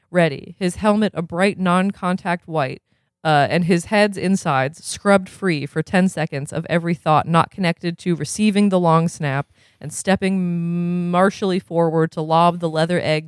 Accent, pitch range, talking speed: American, 160-195 Hz, 165 wpm